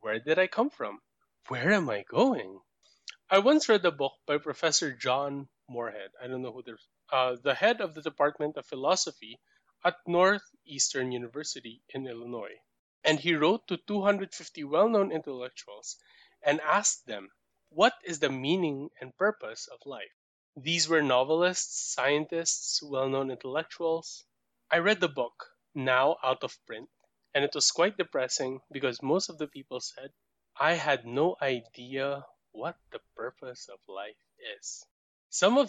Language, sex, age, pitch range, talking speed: Filipino, male, 20-39, 135-185 Hz, 155 wpm